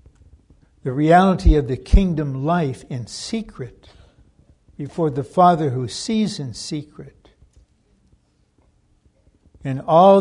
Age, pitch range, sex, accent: 60-79, 100-150 Hz, male, American